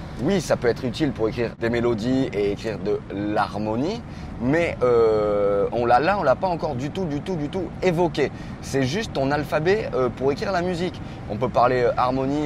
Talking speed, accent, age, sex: 205 wpm, French, 20-39, male